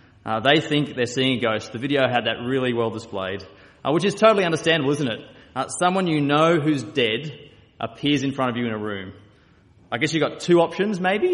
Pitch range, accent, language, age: 110-150 Hz, Australian, English, 20-39